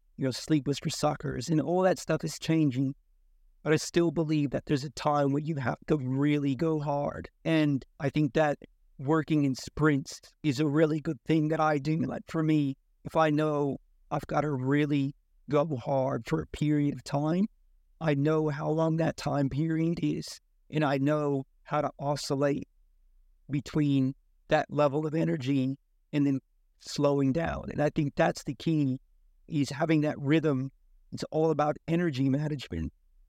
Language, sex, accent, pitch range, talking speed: English, male, American, 140-160 Hz, 175 wpm